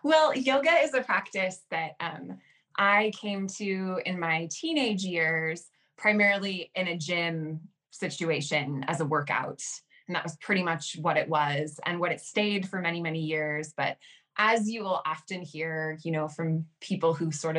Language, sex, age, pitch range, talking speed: English, female, 20-39, 160-190 Hz, 170 wpm